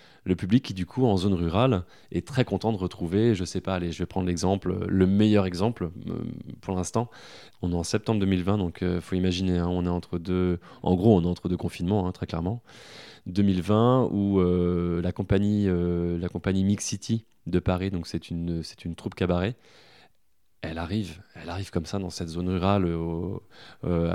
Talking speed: 205 wpm